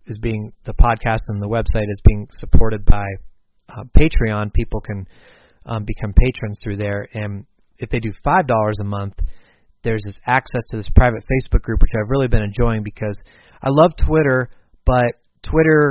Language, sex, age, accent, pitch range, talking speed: English, male, 30-49, American, 105-125 Hz, 175 wpm